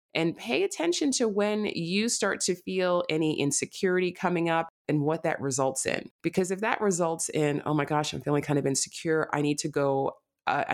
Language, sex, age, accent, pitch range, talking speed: English, female, 30-49, American, 135-165 Hz, 200 wpm